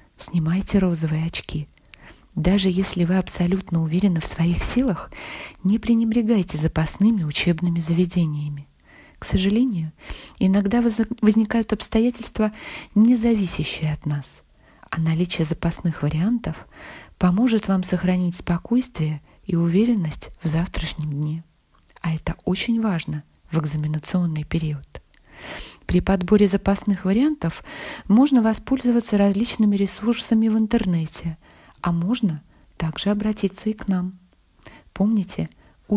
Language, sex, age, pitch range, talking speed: Russian, female, 20-39, 165-220 Hz, 105 wpm